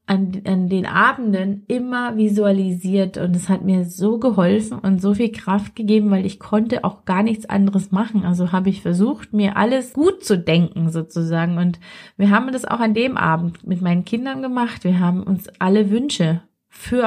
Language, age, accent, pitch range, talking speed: German, 20-39, German, 190-225 Hz, 185 wpm